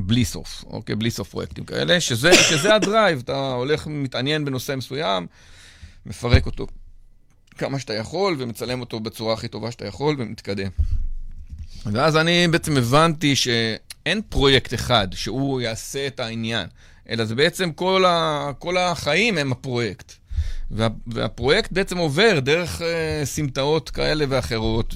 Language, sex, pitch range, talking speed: Hebrew, male, 110-150 Hz, 135 wpm